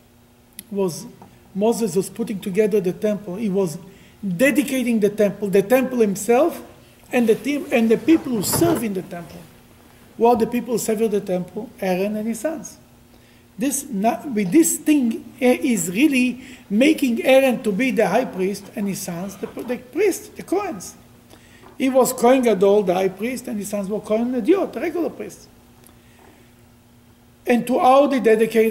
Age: 50-69